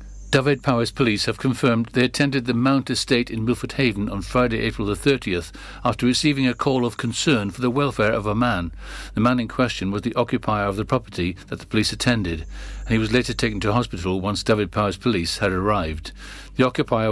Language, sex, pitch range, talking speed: English, male, 100-125 Hz, 205 wpm